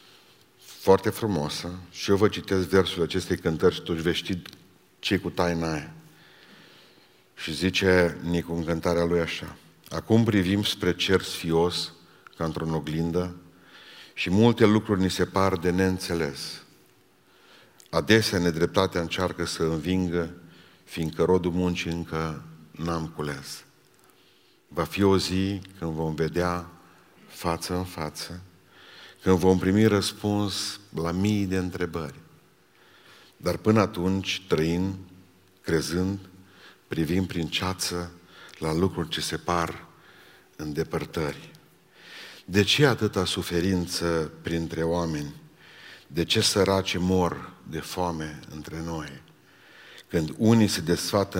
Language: Romanian